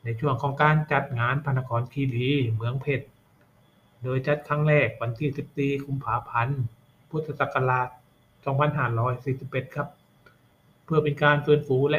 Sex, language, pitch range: male, Thai, 125-145 Hz